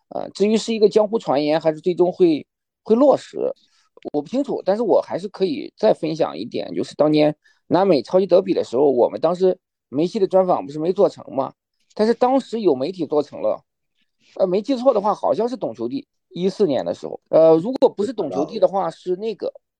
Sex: male